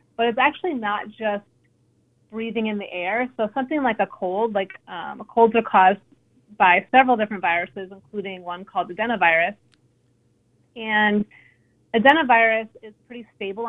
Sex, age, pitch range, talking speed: female, 30-49, 190-230 Hz, 140 wpm